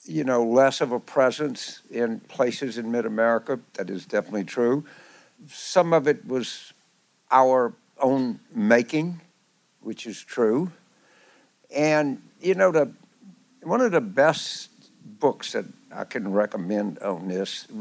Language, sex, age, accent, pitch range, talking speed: English, male, 60-79, American, 110-140 Hz, 140 wpm